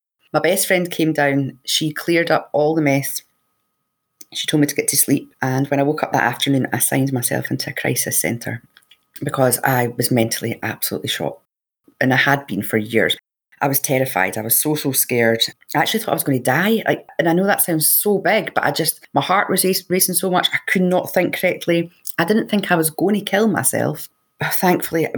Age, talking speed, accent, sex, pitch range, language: 30-49, 215 wpm, British, female, 140-185 Hz, English